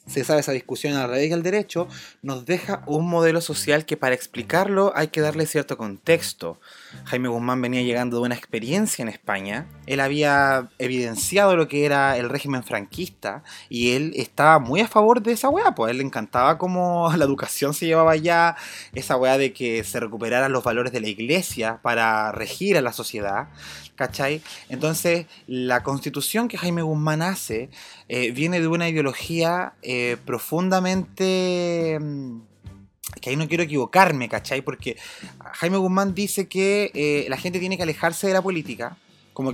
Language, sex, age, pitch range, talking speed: Spanish, male, 20-39, 125-175 Hz, 165 wpm